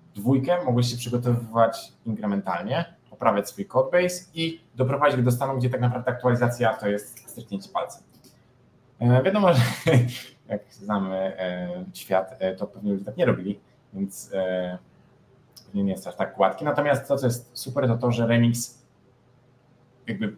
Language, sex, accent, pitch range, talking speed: Polish, male, native, 110-135 Hz, 155 wpm